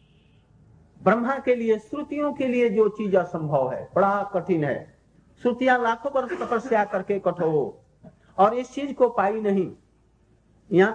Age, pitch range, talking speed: 50-69, 190-250 Hz, 145 wpm